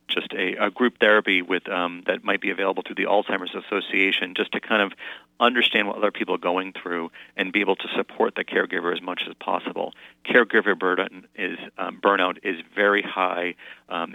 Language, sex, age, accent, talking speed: English, male, 40-59, American, 195 wpm